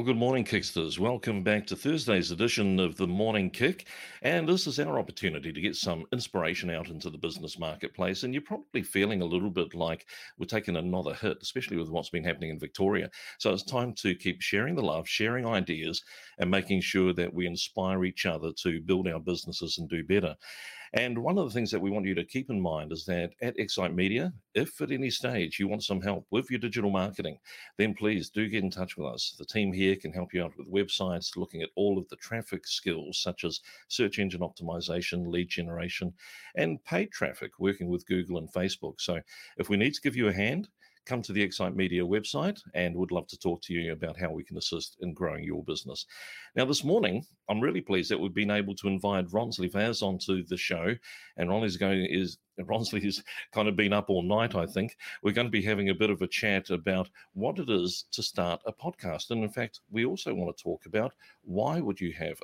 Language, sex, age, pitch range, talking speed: English, male, 50-69, 90-110 Hz, 225 wpm